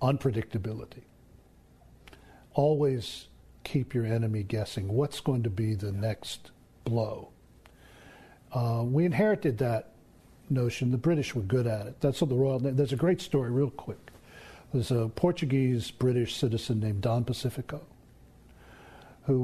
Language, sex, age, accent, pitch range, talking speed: English, male, 60-79, American, 115-135 Hz, 135 wpm